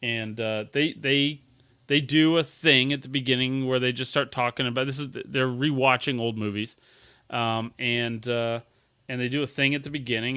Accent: American